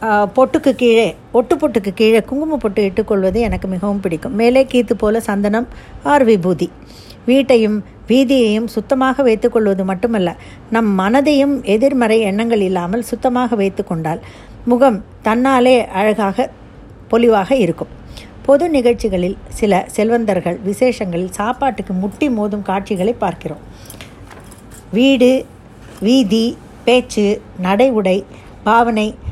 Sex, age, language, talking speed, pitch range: female, 50-69, Tamil, 100 wpm, 195-245 Hz